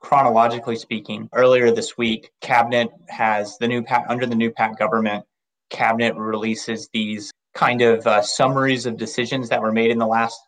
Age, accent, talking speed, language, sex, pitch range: 20-39, American, 170 wpm, English, male, 110-125 Hz